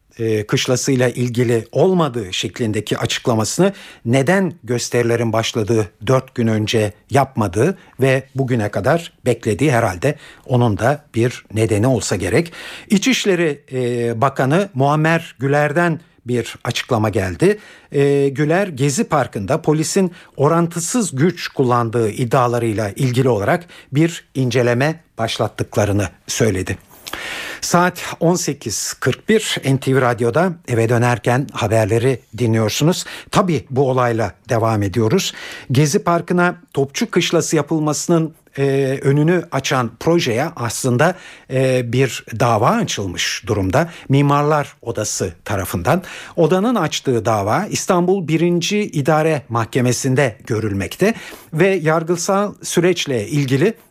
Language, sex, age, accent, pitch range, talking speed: Turkish, male, 50-69, native, 120-165 Hz, 95 wpm